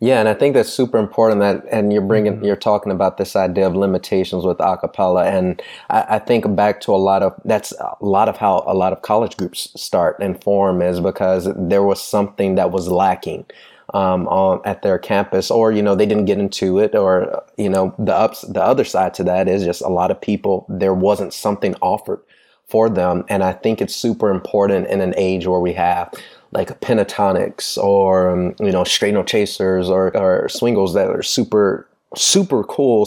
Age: 30-49